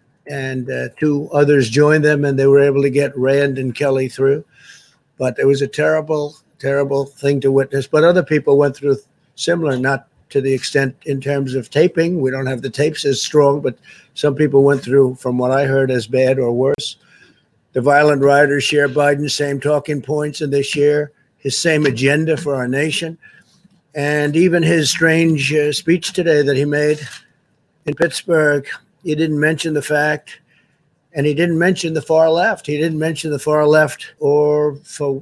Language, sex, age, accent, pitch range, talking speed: English, male, 60-79, American, 140-160 Hz, 185 wpm